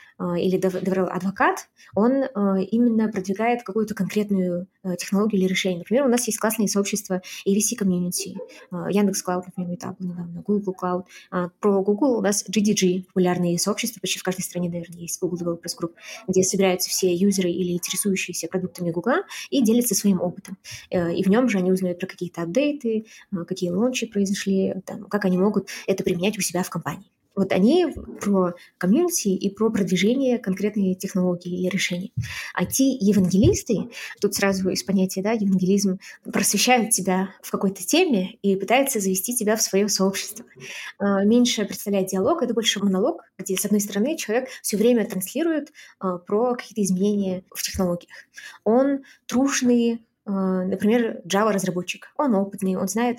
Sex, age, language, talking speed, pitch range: female, 20-39, Russian, 155 wpm, 185-220 Hz